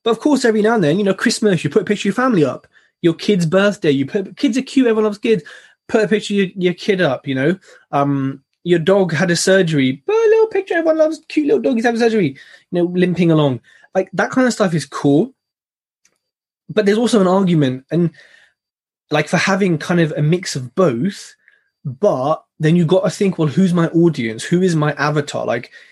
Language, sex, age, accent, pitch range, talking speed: English, male, 20-39, British, 150-205 Hz, 225 wpm